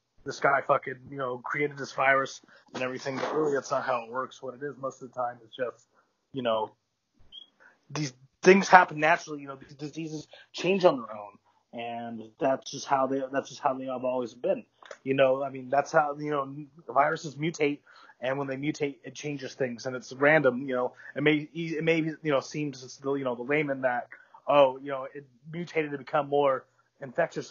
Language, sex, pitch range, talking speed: English, male, 130-150 Hz, 210 wpm